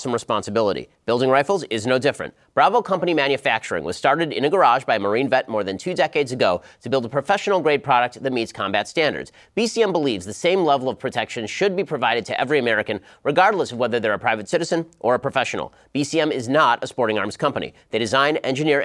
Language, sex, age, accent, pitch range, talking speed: English, male, 30-49, American, 125-155 Hz, 215 wpm